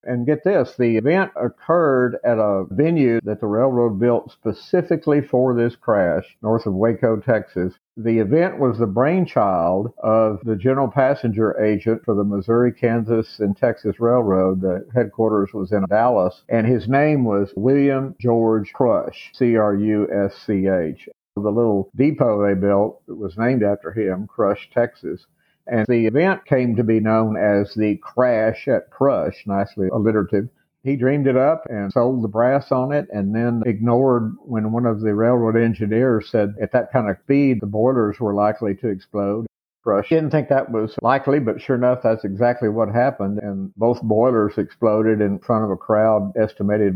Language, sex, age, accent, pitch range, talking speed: English, male, 50-69, American, 105-125 Hz, 165 wpm